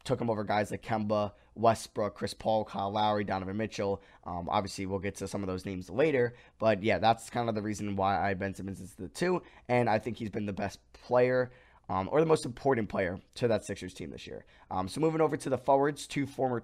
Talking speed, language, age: 240 wpm, English, 20-39